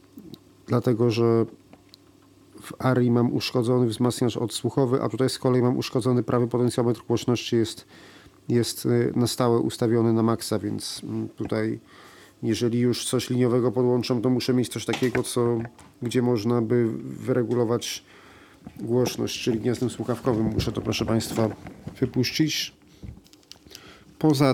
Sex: male